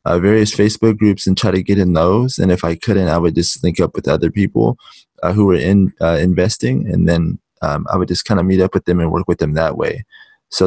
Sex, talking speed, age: male, 265 wpm, 20-39